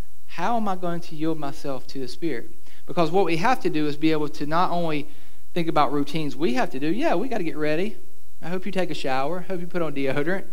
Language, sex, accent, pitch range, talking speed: English, male, American, 135-175 Hz, 270 wpm